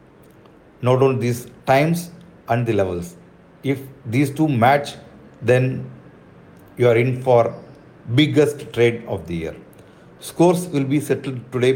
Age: 50-69